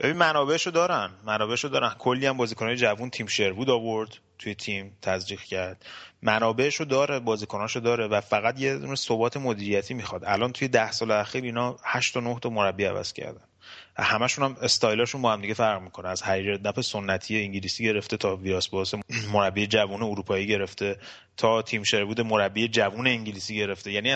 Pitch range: 105-125 Hz